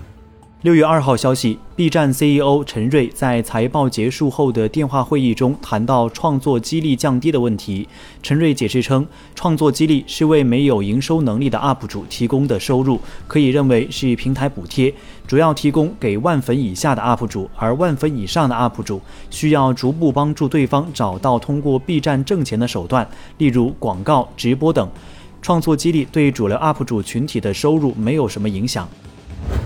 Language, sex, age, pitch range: Chinese, male, 30-49, 110-145 Hz